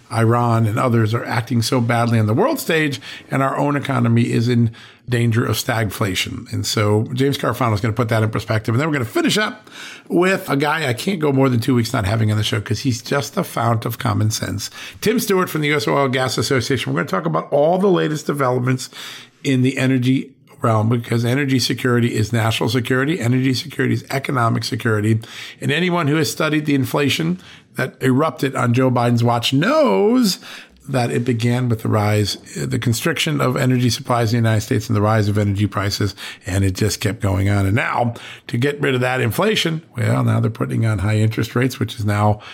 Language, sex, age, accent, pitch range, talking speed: English, male, 50-69, American, 110-135 Hz, 215 wpm